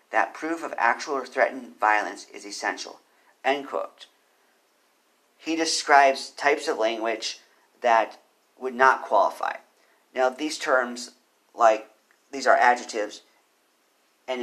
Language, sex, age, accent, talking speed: English, male, 50-69, American, 115 wpm